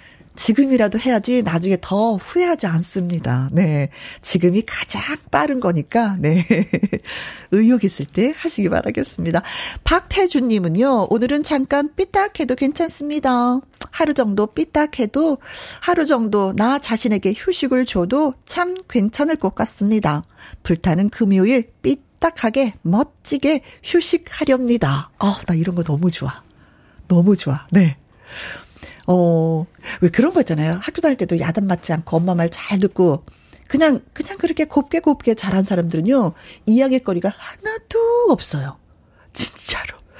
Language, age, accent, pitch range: Korean, 40-59, native, 185-280 Hz